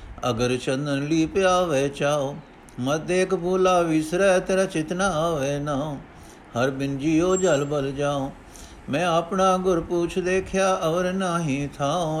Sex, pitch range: male, 140-185 Hz